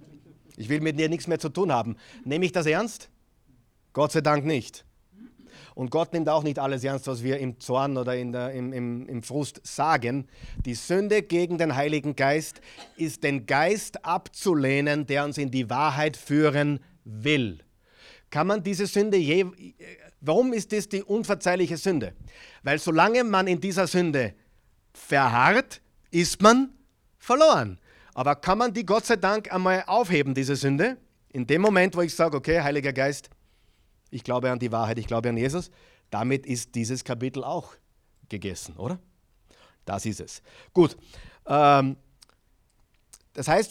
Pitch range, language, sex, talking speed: 130-180 Hz, German, male, 160 wpm